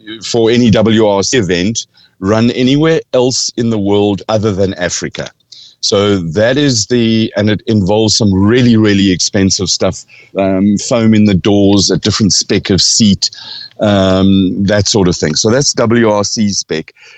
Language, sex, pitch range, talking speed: English, male, 95-120 Hz, 155 wpm